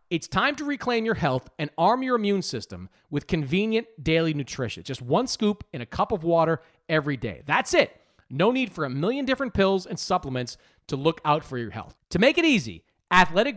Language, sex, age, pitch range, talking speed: English, male, 40-59, 115-195 Hz, 210 wpm